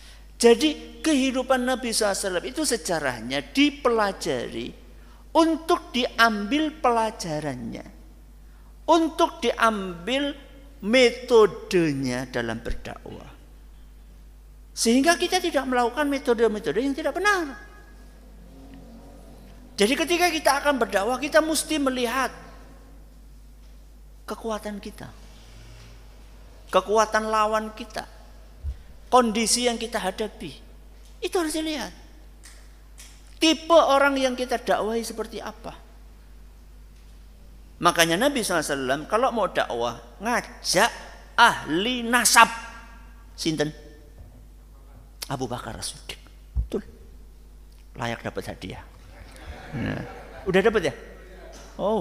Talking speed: 85 wpm